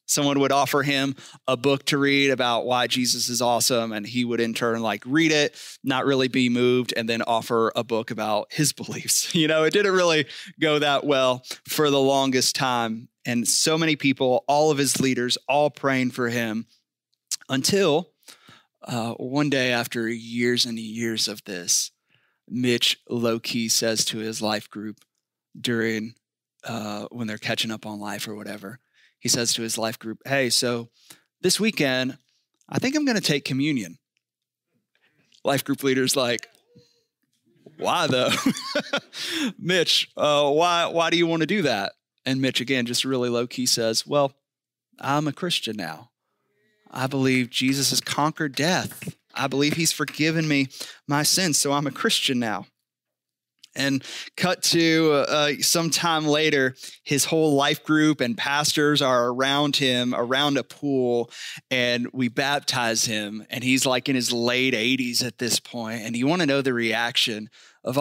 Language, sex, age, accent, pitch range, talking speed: English, male, 30-49, American, 120-150 Hz, 165 wpm